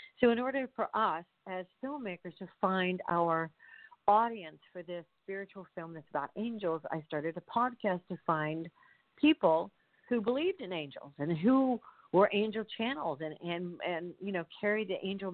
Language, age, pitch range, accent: English, 50-69, 180-250 Hz, American